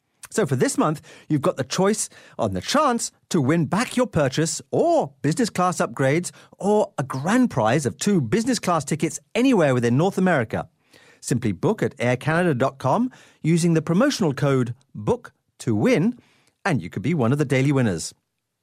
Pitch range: 135-210 Hz